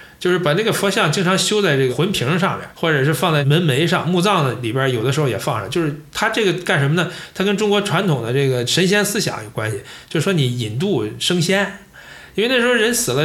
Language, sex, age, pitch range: Chinese, male, 20-39, 135-185 Hz